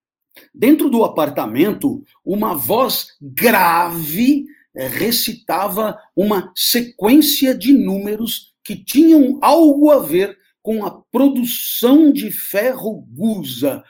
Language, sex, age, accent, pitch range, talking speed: Portuguese, male, 50-69, Brazilian, 225-320 Hz, 95 wpm